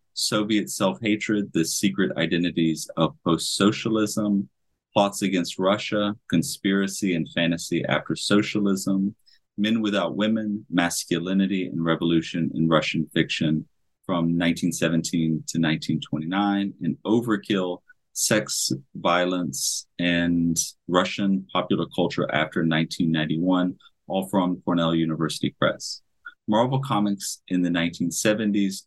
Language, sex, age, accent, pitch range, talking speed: English, male, 30-49, American, 85-100 Hz, 100 wpm